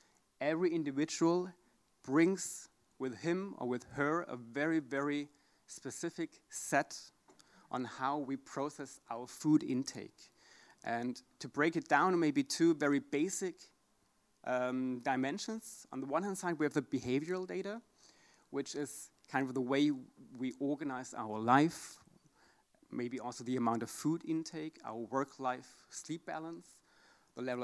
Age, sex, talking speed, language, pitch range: 30-49, male, 140 wpm, English, 125-165 Hz